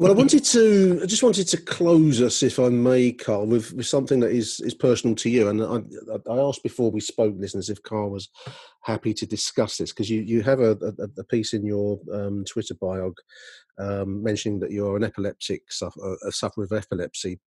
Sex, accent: male, British